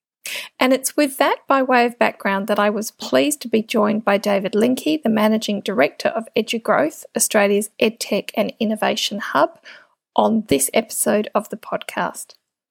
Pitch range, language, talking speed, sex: 210-255 Hz, English, 160 wpm, female